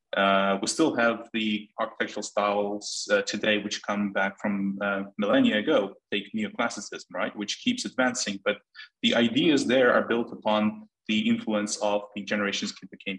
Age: 20-39